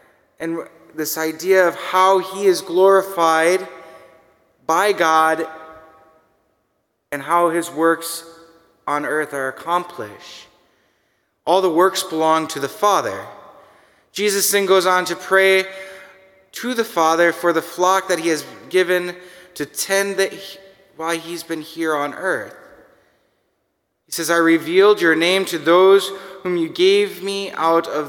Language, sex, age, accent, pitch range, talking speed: English, male, 20-39, American, 160-190 Hz, 135 wpm